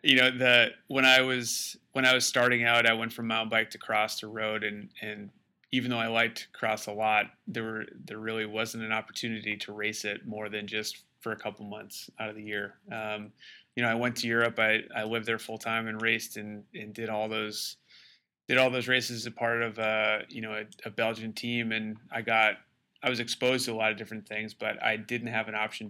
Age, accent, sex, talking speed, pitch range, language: 30-49, American, male, 240 wpm, 105-115 Hz, English